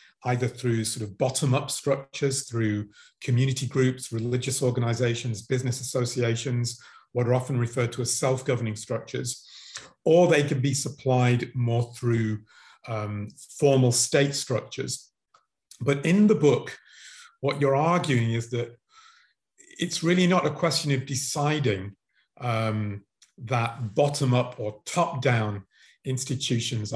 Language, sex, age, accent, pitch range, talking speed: English, male, 40-59, British, 120-140 Hz, 120 wpm